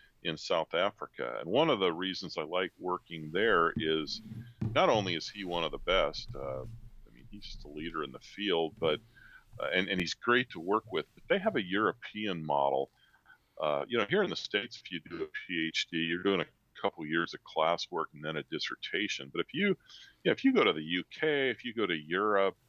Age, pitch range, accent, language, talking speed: 40-59, 80-110 Hz, American, English, 220 wpm